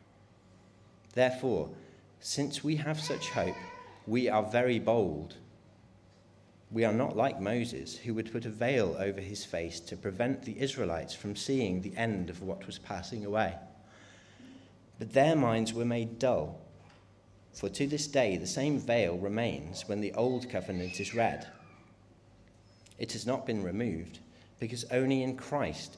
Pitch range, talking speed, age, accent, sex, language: 95-125 Hz, 150 wpm, 40-59, British, male, English